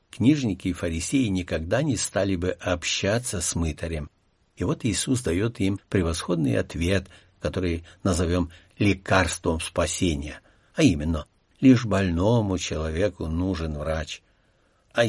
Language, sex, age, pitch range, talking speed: Russian, male, 60-79, 85-110 Hz, 115 wpm